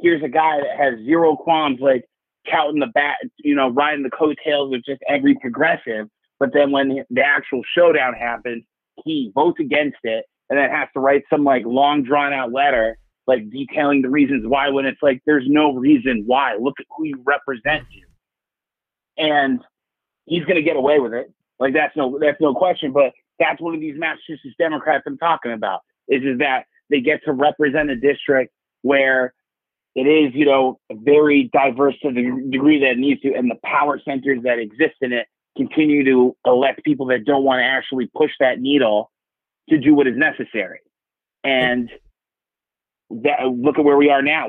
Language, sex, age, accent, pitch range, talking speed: English, male, 30-49, American, 125-155 Hz, 190 wpm